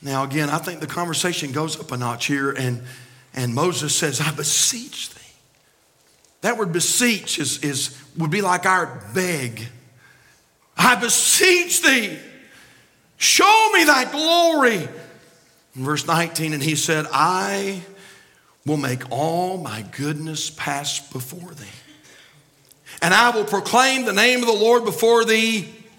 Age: 50-69